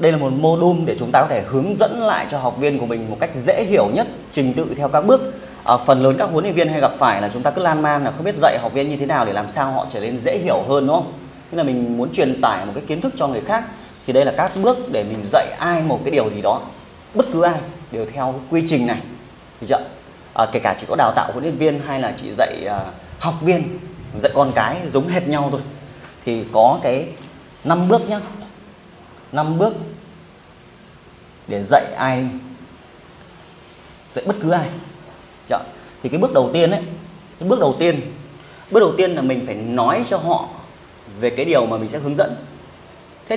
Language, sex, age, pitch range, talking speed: Vietnamese, male, 20-39, 130-175 Hz, 235 wpm